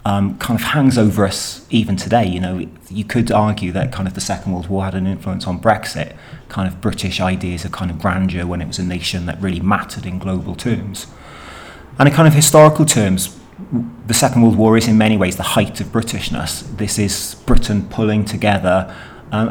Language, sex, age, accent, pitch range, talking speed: English, male, 30-49, British, 95-120 Hz, 210 wpm